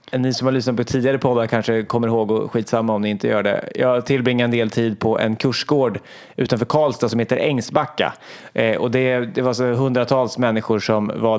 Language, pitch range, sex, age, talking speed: Swedish, 110-135 Hz, male, 30-49, 210 wpm